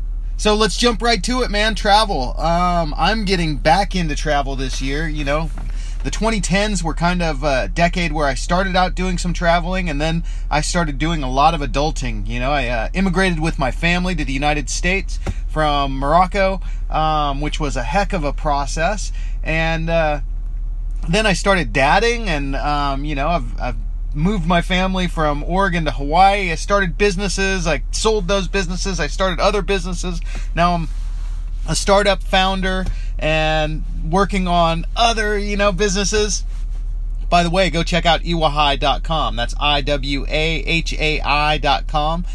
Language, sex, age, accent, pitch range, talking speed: English, male, 30-49, American, 150-195 Hz, 170 wpm